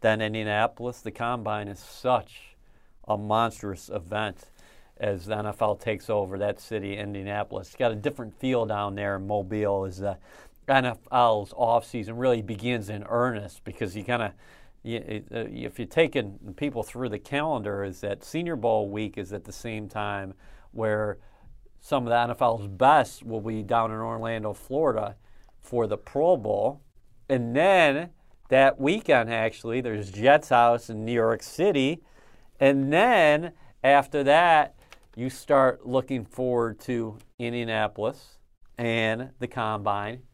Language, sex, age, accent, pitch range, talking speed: English, male, 40-59, American, 105-135 Hz, 145 wpm